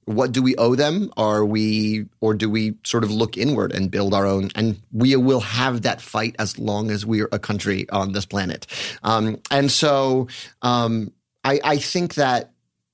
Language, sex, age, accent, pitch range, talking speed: English, male, 30-49, American, 105-130 Hz, 195 wpm